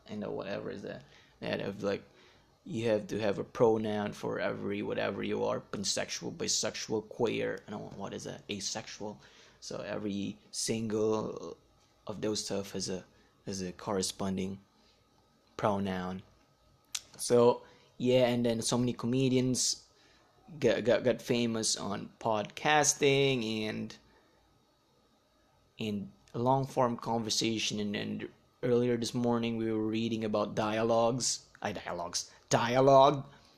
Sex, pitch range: male, 110-135 Hz